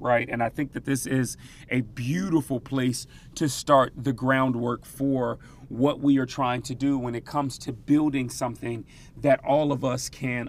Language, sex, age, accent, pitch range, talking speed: English, male, 30-49, American, 125-145 Hz, 185 wpm